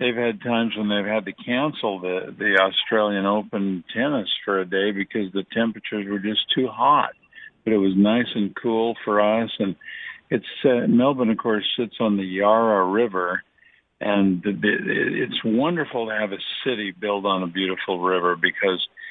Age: 50-69